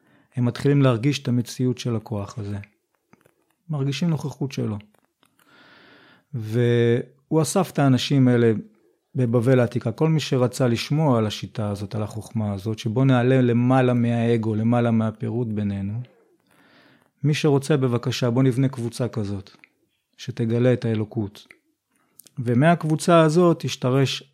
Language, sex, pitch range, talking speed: Hebrew, male, 115-135 Hz, 120 wpm